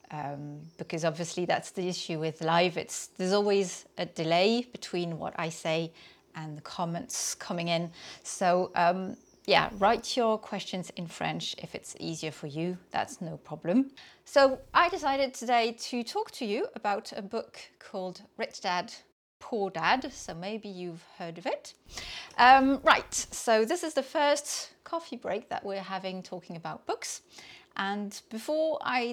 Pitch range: 175-260 Hz